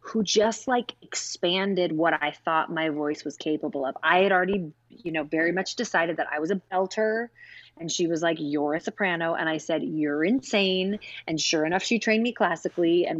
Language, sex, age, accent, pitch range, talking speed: English, female, 20-39, American, 155-205 Hz, 205 wpm